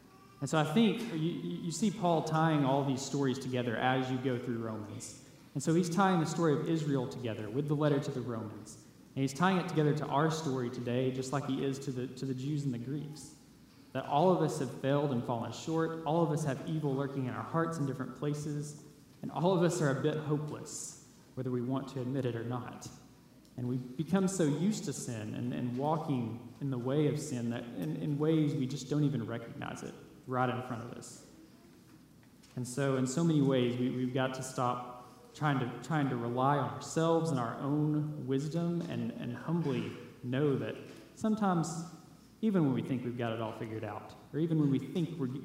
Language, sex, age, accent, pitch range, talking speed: English, male, 20-39, American, 125-150 Hz, 215 wpm